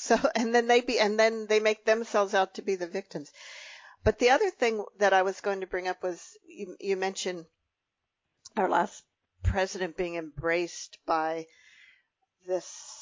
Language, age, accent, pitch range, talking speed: English, 50-69, American, 180-265 Hz, 170 wpm